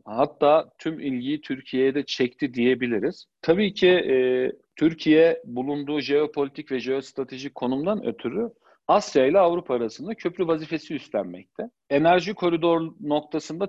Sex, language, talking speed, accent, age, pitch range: male, Turkish, 120 wpm, native, 50-69, 130-180 Hz